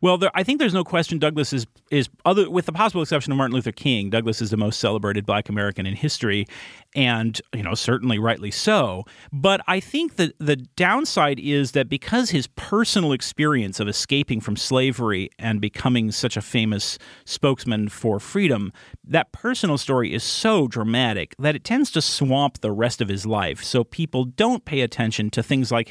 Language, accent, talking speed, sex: English, American, 190 wpm, male